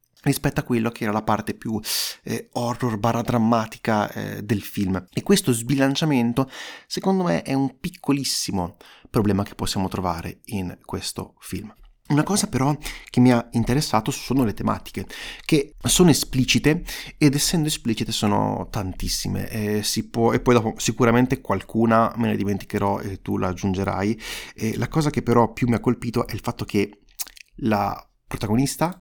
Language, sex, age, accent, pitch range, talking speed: Italian, male, 30-49, native, 110-145 Hz, 160 wpm